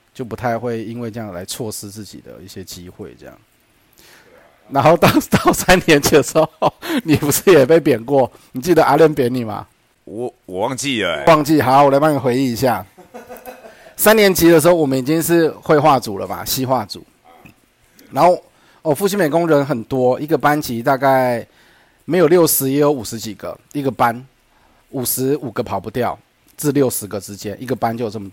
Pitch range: 115-145 Hz